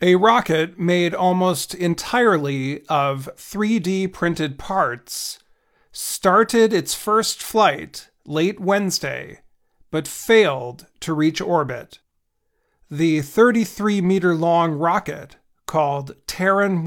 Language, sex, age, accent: Chinese, male, 40-59, American